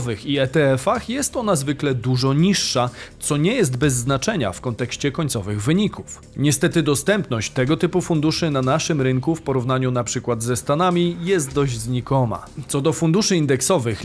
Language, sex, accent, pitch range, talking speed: Polish, male, native, 130-180 Hz, 155 wpm